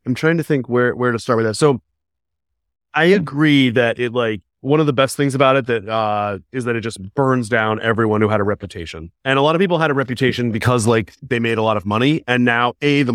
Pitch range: 105-150 Hz